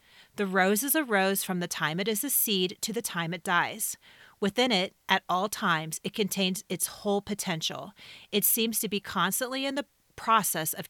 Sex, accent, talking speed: female, American, 200 wpm